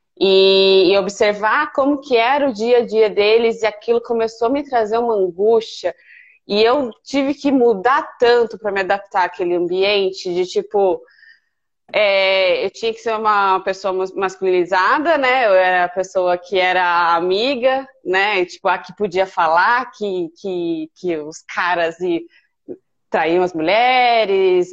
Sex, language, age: female, Portuguese, 20-39